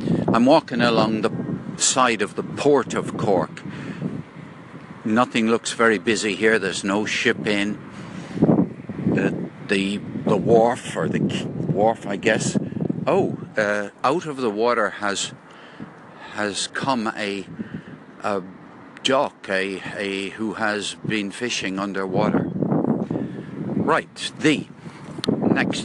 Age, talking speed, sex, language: 60-79, 115 wpm, male, English